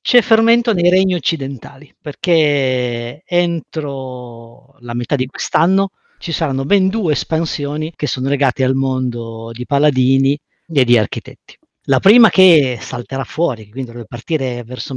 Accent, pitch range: native, 120-155 Hz